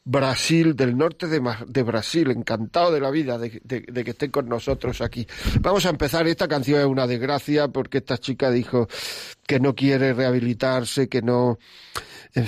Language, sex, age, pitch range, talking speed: Spanish, male, 40-59, 130-155 Hz, 180 wpm